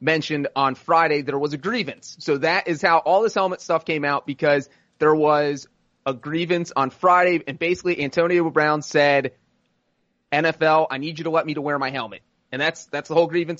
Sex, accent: male, American